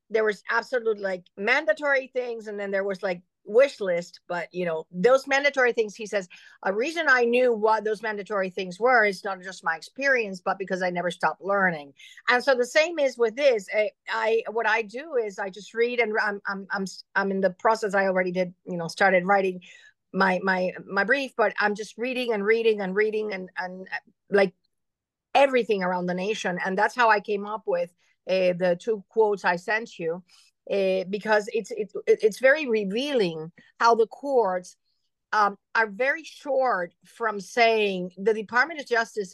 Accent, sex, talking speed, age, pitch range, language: American, female, 190 wpm, 50-69, 185-235 Hz, English